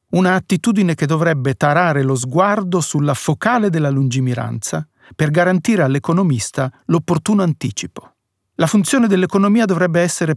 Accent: native